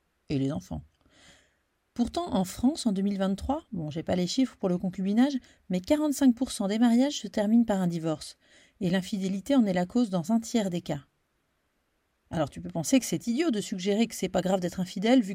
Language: French